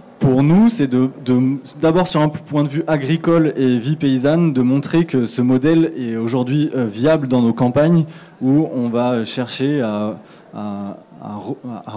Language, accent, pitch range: French, French, 125-150 Hz